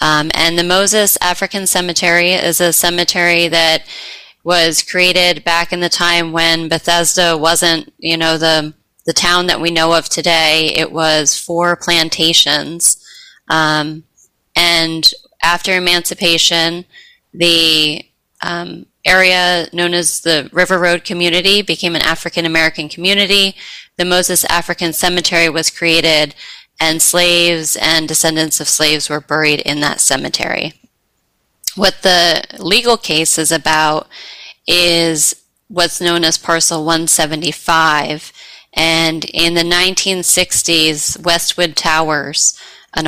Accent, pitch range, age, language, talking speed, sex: American, 160-175 Hz, 20-39, English, 120 wpm, female